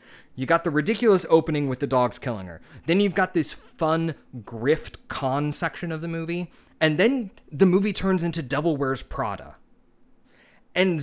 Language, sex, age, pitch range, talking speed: English, male, 20-39, 120-160 Hz, 170 wpm